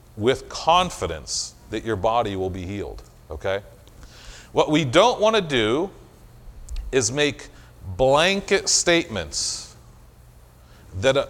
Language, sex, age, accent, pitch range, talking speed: English, male, 40-59, American, 105-170 Hz, 105 wpm